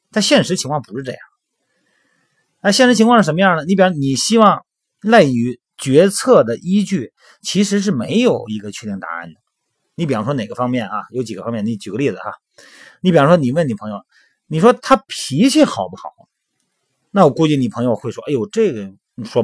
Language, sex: Chinese, male